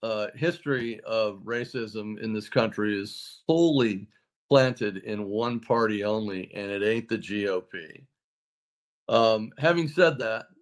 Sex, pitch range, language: male, 105-125 Hz, English